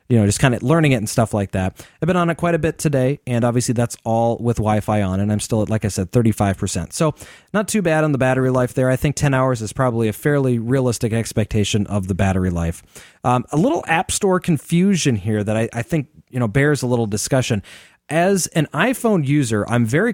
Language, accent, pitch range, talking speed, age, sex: English, American, 115-155 Hz, 240 wpm, 30-49, male